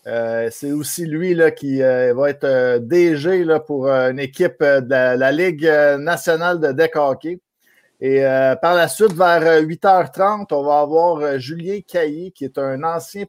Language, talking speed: French, 180 wpm